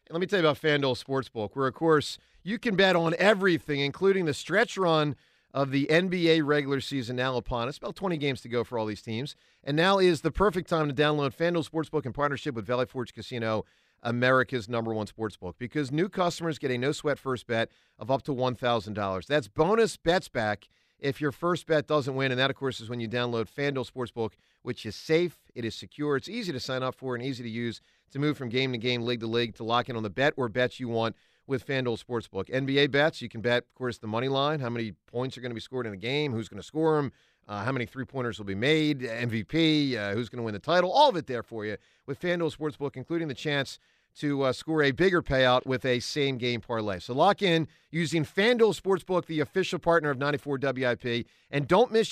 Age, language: 40-59, English